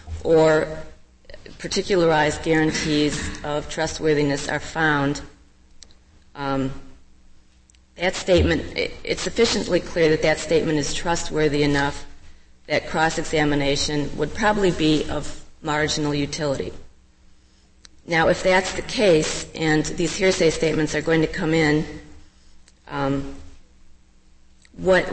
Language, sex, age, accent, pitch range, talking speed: English, female, 40-59, American, 140-165 Hz, 105 wpm